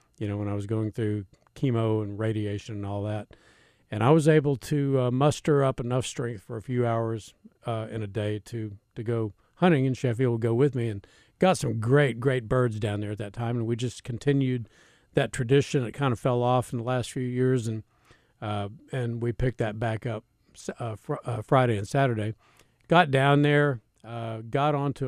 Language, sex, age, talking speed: English, male, 50-69, 210 wpm